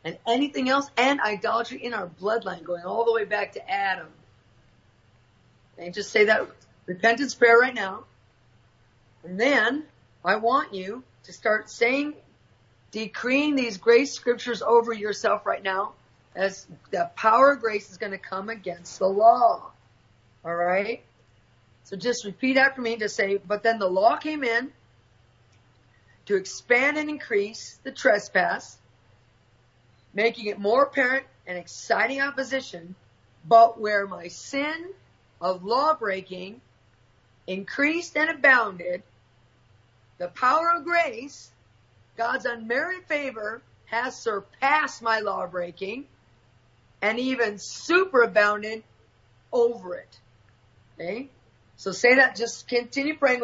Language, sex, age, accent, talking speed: English, female, 40-59, American, 125 wpm